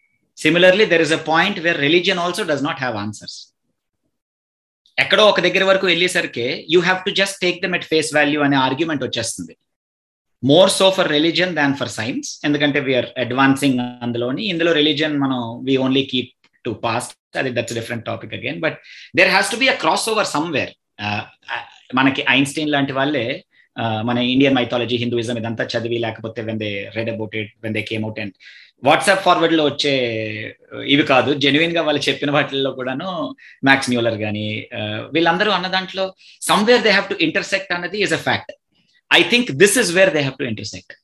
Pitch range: 120-165 Hz